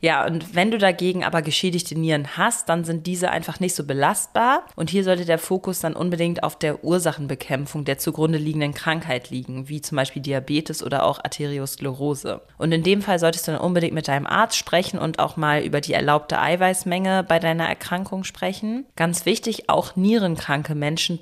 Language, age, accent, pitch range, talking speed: German, 30-49, German, 150-185 Hz, 185 wpm